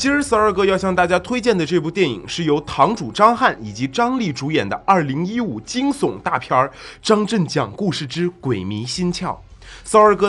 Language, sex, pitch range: Chinese, male, 145-215 Hz